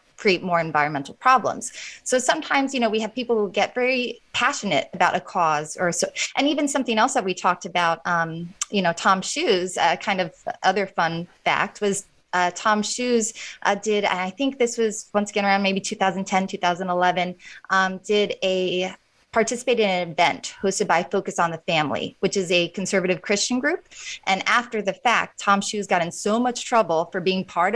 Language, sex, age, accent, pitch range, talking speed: English, female, 20-39, American, 180-235 Hz, 190 wpm